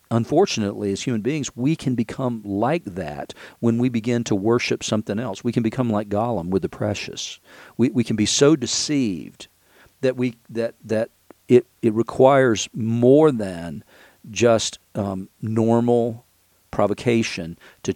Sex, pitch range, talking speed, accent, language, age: male, 95-120 Hz, 145 wpm, American, English, 50-69